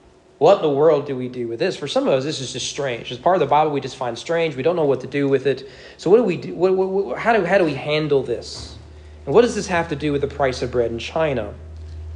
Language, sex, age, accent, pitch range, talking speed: English, male, 40-59, American, 135-190 Hz, 285 wpm